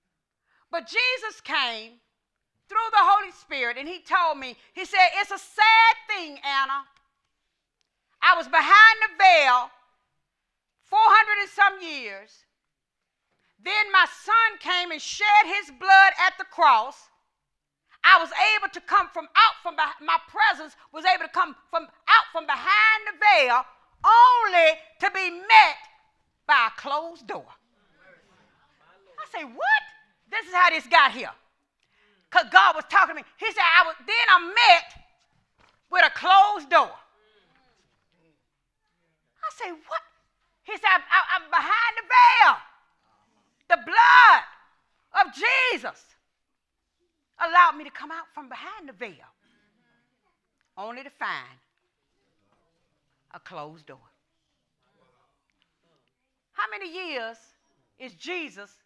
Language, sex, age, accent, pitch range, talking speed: English, female, 40-59, American, 305-415 Hz, 130 wpm